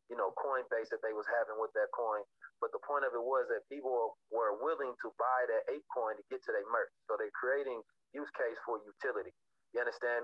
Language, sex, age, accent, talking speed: English, male, 30-49, American, 230 wpm